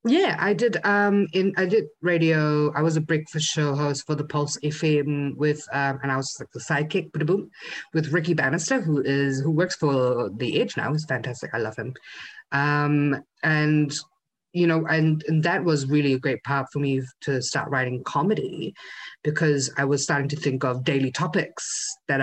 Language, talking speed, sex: English, 190 wpm, female